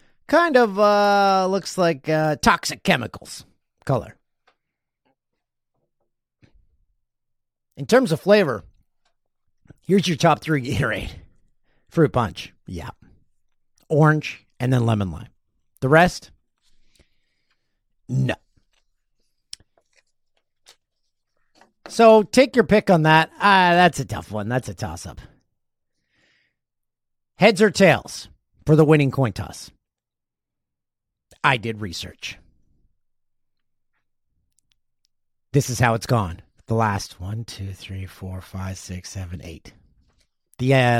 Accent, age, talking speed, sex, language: American, 50-69, 105 wpm, male, English